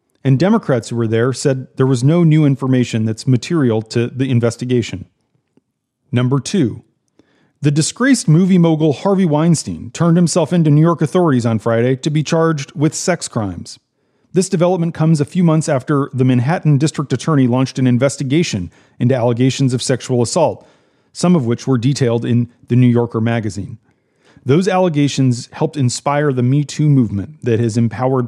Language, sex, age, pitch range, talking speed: English, male, 40-59, 120-145 Hz, 165 wpm